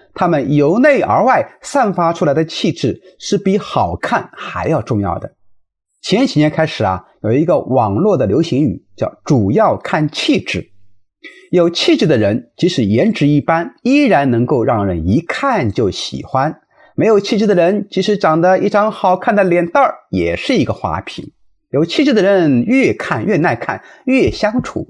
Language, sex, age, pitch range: Chinese, male, 30-49, 150-225 Hz